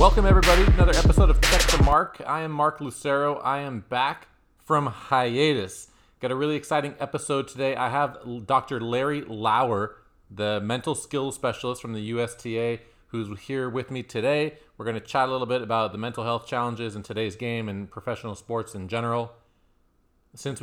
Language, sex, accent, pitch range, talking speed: English, male, American, 105-130 Hz, 180 wpm